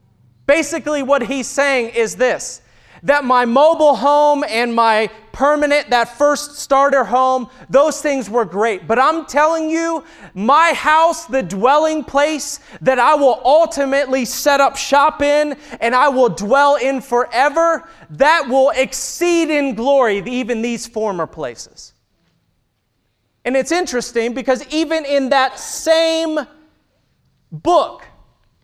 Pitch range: 235-295 Hz